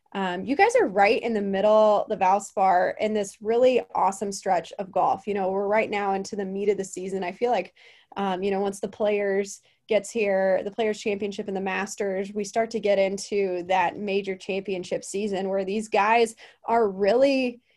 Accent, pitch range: American, 190-225 Hz